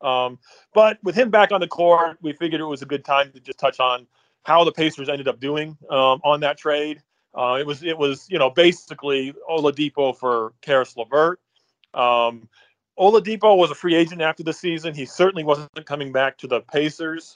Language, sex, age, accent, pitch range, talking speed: English, male, 30-49, American, 135-165 Hz, 200 wpm